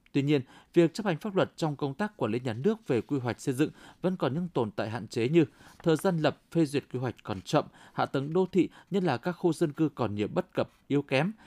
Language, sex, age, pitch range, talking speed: Vietnamese, male, 20-39, 125-175 Hz, 270 wpm